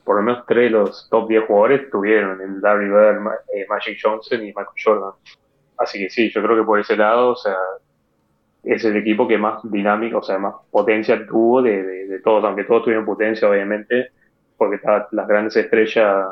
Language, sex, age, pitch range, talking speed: Spanish, male, 20-39, 105-120 Hz, 205 wpm